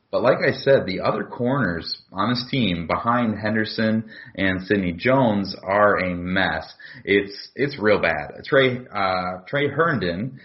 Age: 30-49